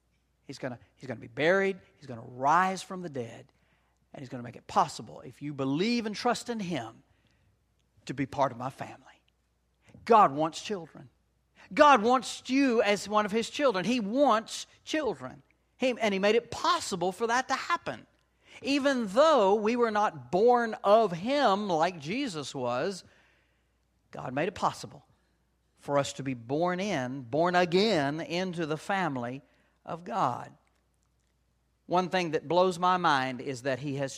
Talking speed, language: 165 wpm, English